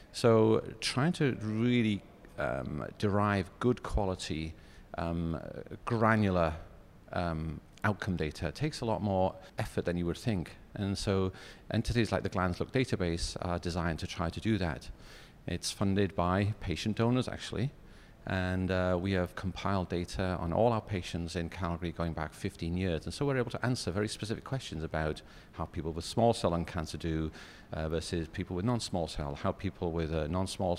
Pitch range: 85-105 Hz